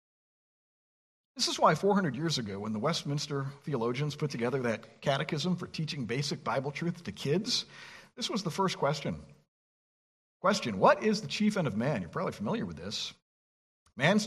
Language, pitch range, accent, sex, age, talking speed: English, 125-185 Hz, American, male, 50-69, 170 wpm